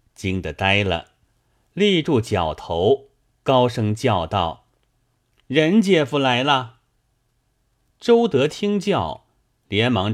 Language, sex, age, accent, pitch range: Chinese, male, 30-49, native, 105-130 Hz